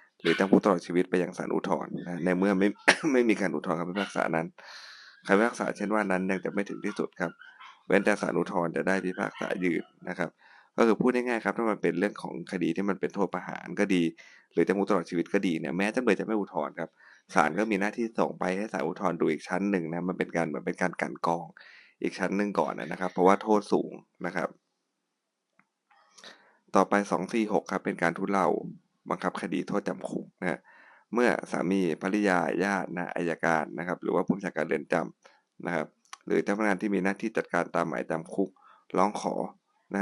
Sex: male